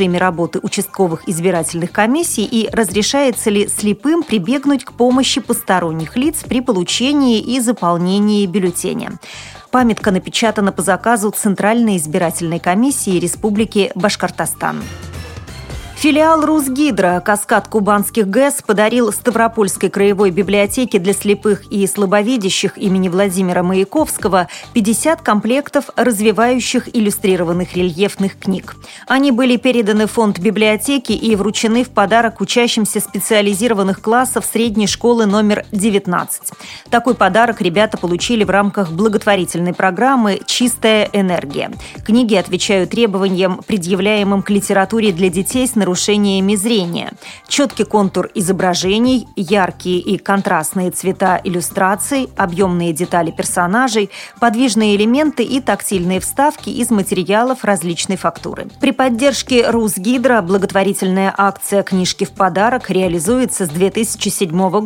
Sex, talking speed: female, 110 wpm